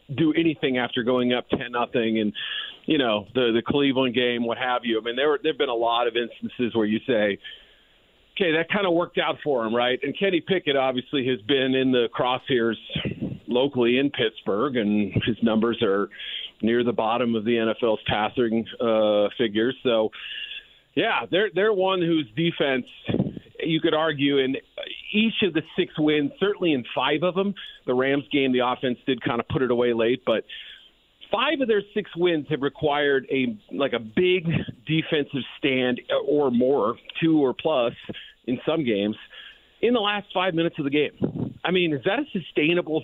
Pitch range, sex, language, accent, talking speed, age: 120-170 Hz, male, English, American, 185 wpm, 40-59